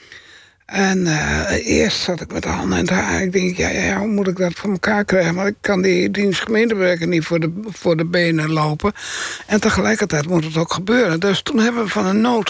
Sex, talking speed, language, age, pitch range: male, 230 wpm, Dutch, 60-79, 175-230 Hz